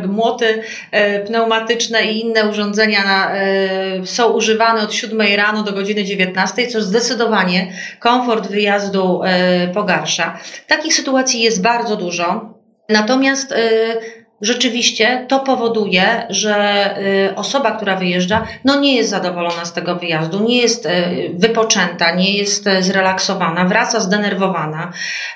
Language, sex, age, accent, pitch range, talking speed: Polish, female, 30-49, native, 190-235 Hz, 105 wpm